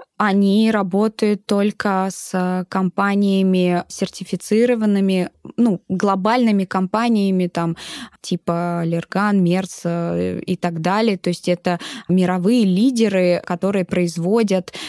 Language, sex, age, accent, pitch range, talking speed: Russian, female, 20-39, native, 180-215 Hz, 90 wpm